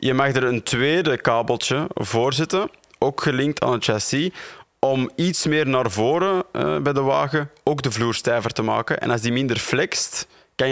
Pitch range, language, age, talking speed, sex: 115-140 Hz, Dutch, 20-39, 190 wpm, male